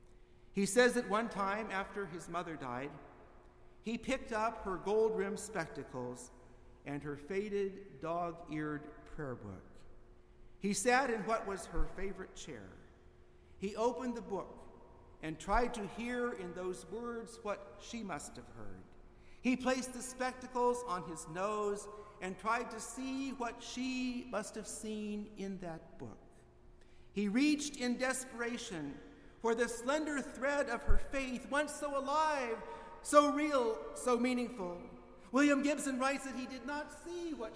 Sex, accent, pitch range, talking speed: male, American, 145-235 Hz, 145 wpm